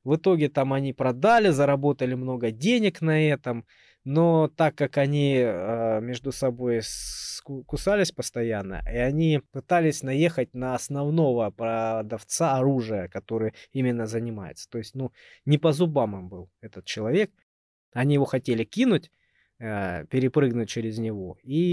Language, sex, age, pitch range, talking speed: Russian, male, 20-39, 110-145 Hz, 135 wpm